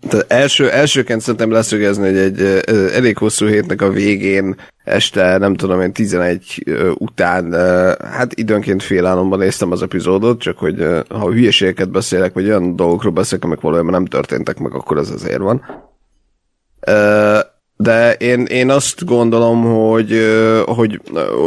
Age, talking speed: 30-49, 140 wpm